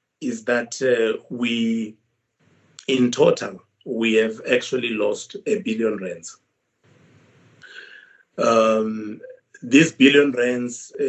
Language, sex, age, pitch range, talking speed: English, male, 50-69, 110-150 Hz, 95 wpm